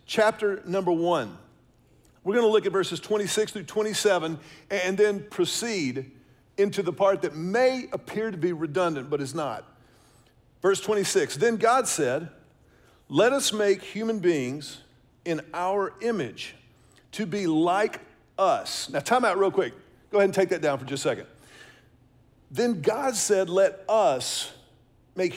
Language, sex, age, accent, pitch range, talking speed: English, male, 50-69, American, 165-215 Hz, 150 wpm